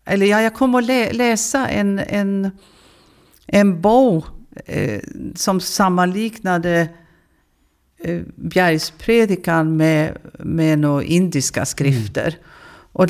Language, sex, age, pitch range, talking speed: Danish, female, 50-69, 145-195 Hz, 100 wpm